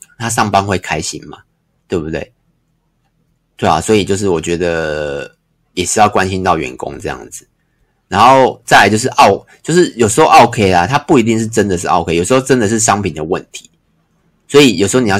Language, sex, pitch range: Chinese, male, 95-125 Hz